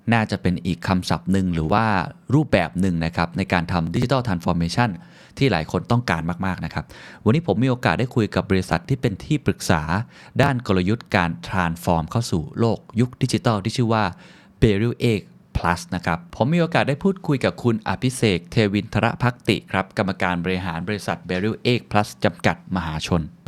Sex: male